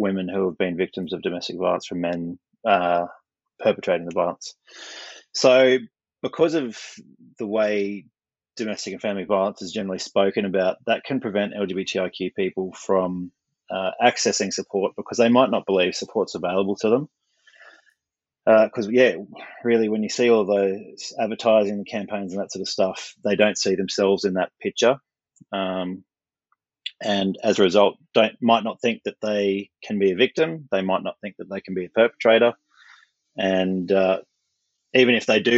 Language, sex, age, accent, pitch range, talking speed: English, male, 30-49, Australian, 95-115 Hz, 165 wpm